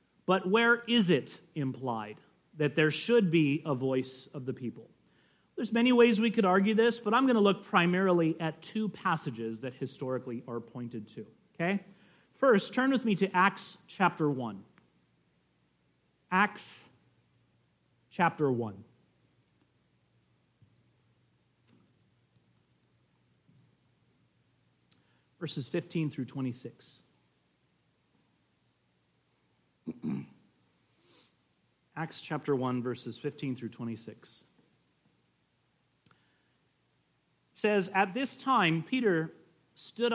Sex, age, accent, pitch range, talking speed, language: male, 40-59, American, 125-190 Hz, 95 wpm, English